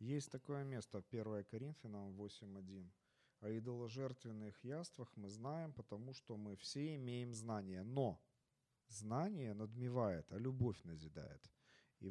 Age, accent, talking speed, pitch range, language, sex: 40-59, native, 125 wpm, 115-145 Hz, Ukrainian, male